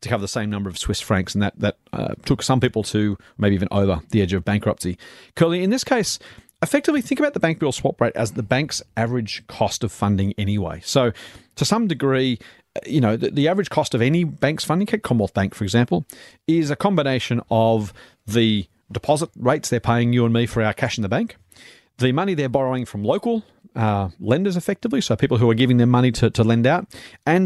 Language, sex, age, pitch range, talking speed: English, male, 40-59, 105-150 Hz, 220 wpm